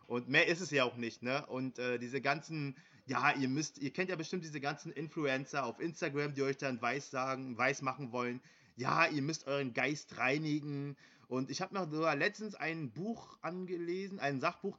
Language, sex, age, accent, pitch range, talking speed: German, male, 20-39, German, 130-165 Hz, 200 wpm